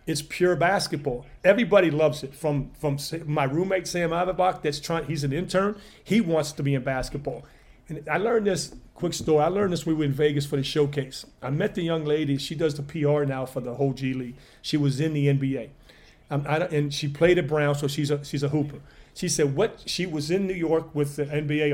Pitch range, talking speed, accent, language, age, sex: 145-180 Hz, 235 wpm, American, English, 40-59, male